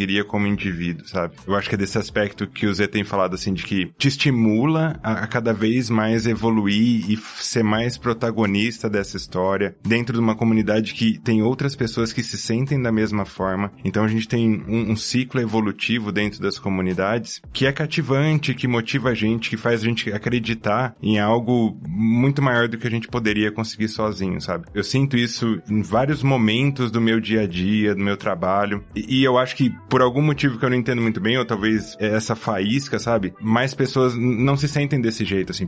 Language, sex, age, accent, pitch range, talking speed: Portuguese, male, 20-39, Brazilian, 105-125 Hz, 200 wpm